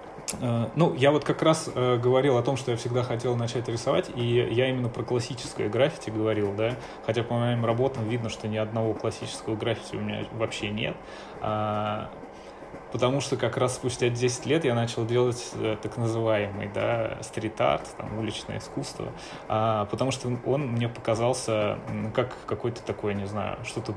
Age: 20-39